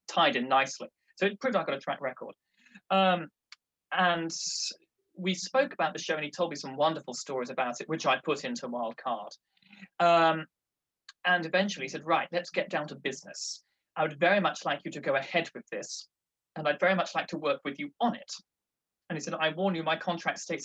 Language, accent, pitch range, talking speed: English, British, 150-190 Hz, 220 wpm